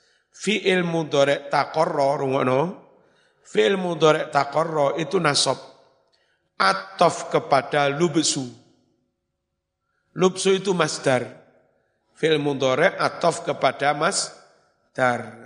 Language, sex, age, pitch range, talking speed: Indonesian, male, 50-69, 140-175 Hz, 80 wpm